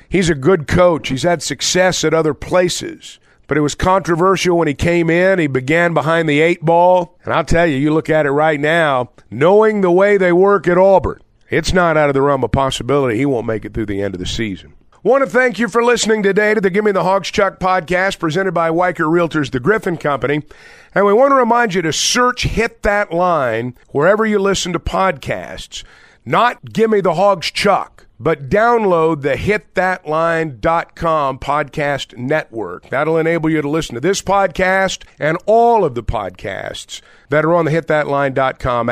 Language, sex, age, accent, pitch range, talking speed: English, male, 50-69, American, 150-200 Hz, 195 wpm